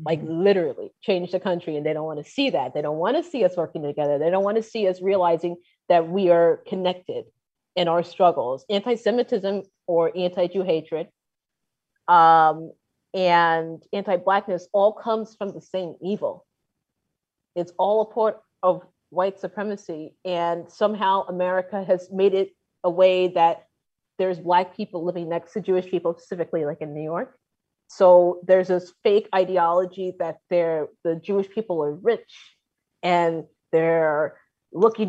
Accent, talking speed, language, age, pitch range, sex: American, 155 wpm, English, 30-49, 170-200 Hz, female